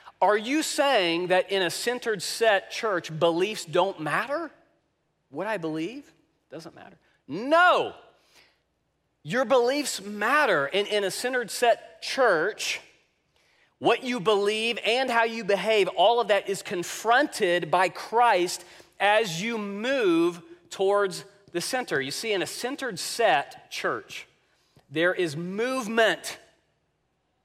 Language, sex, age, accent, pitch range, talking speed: English, male, 40-59, American, 175-235 Hz, 125 wpm